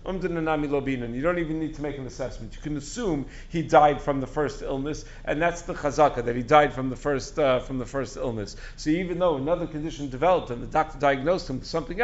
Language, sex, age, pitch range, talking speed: English, male, 50-69, 135-170 Hz, 230 wpm